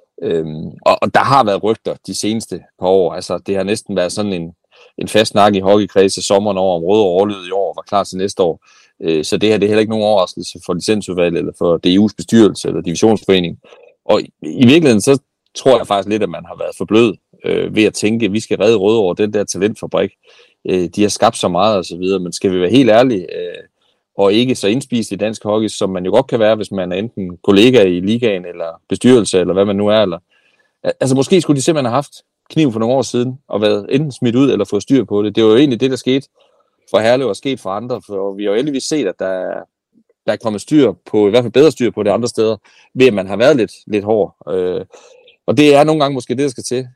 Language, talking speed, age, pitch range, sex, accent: Danish, 255 wpm, 30-49, 100-130 Hz, male, native